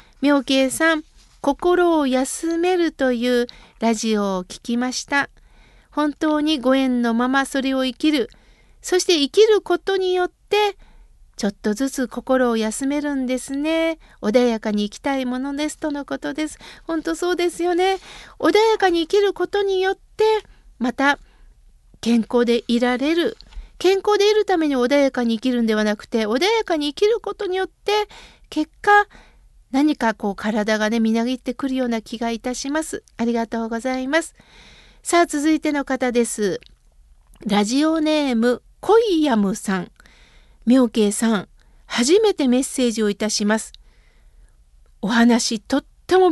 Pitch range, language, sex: 235-320 Hz, Japanese, female